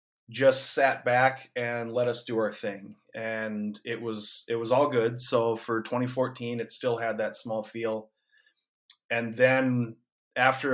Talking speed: 155 wpm